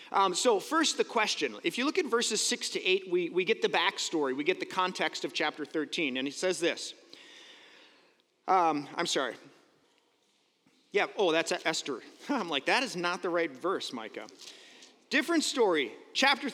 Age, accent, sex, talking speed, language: 30-49, American, male, 175 wpm, English